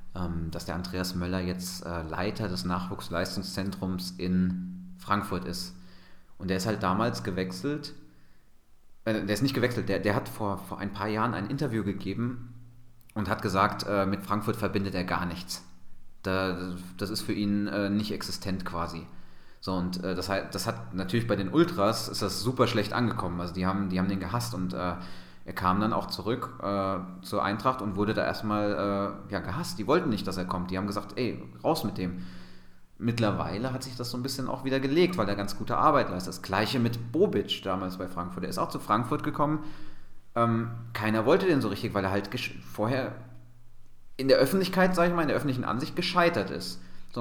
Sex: male